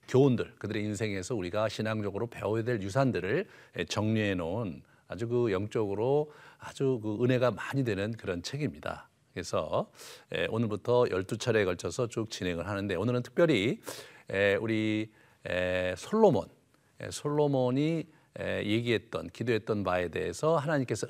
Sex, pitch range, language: male, 100-145 Hz, Korean